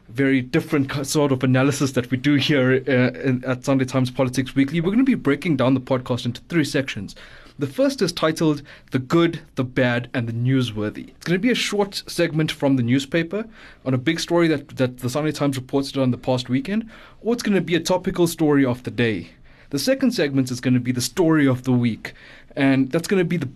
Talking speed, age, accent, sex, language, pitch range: 230 wpm, 20-39, South African, male, English, 130-180 Hz